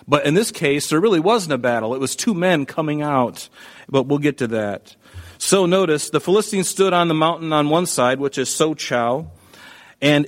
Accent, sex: American, male